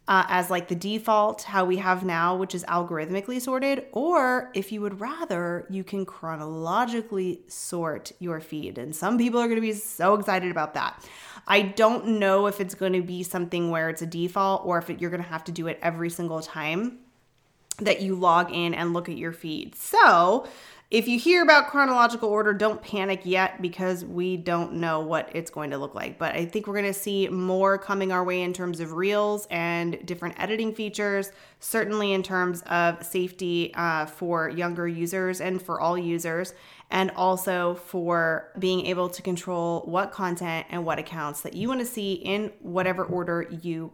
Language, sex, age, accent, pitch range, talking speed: English, female, 30-49, American, 170-200 Hz, 195 wpm